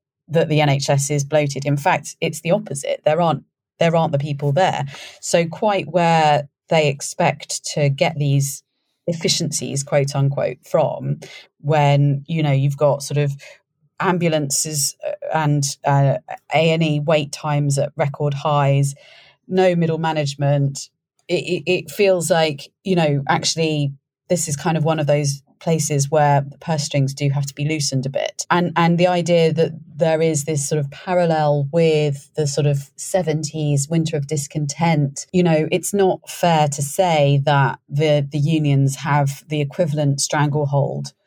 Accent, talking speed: British, 160 wpm